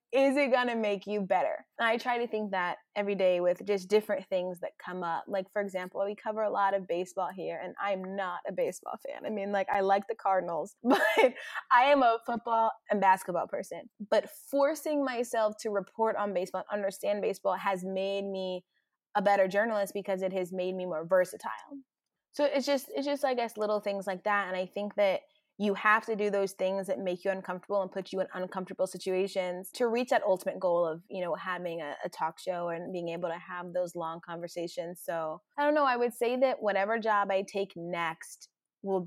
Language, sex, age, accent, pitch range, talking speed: English, female, 20-39, American, 180-215 Hz, 215 wpm